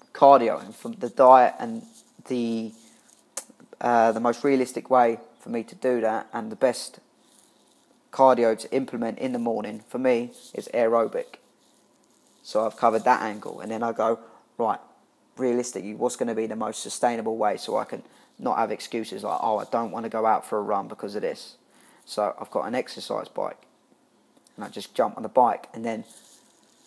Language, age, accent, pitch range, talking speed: English, 20-39, British, 115-135 Hz, 190 wpm